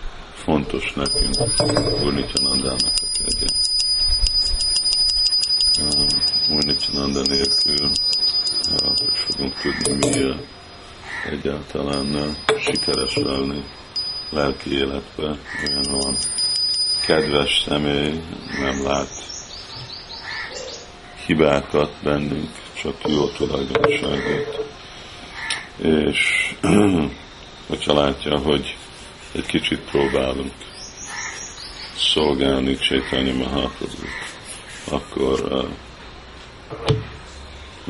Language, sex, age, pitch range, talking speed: Hungarian, male, 50-69, 70-75 Hz, 70 wpm